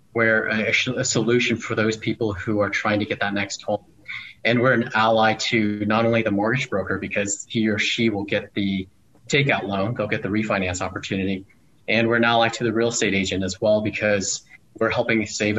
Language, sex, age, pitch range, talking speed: English, male, 30-49, 105-120 Hz, 210 wpm